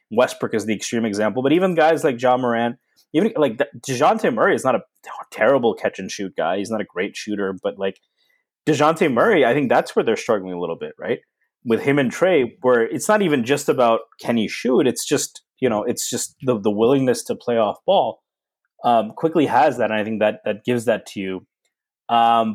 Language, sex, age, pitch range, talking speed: English, male, 20-39, 105-145 Hz, 220 wpm